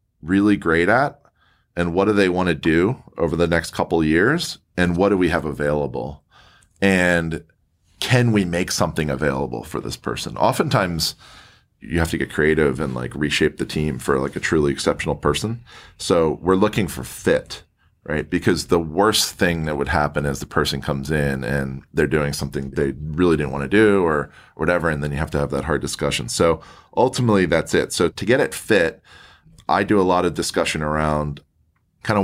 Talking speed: 195 wpm